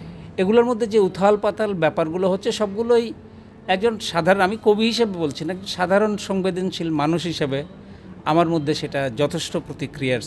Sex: male